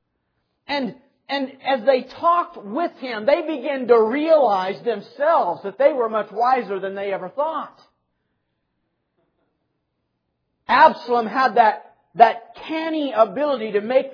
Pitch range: 185-275 Hz